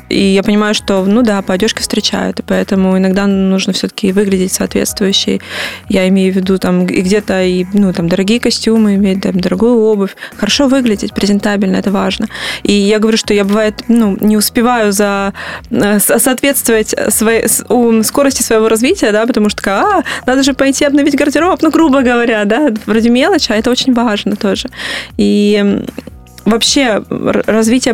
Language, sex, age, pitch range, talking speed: Russian, female, 20-39, 205-240 Hz, 160 wpm